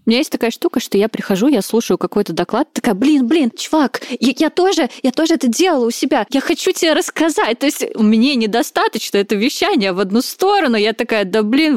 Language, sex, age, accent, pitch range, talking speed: Russian, female, 20-39, native, 200-275 Hz, 215 wpm